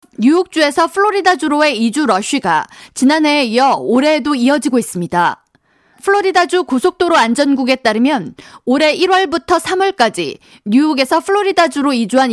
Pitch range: 245-330 Hz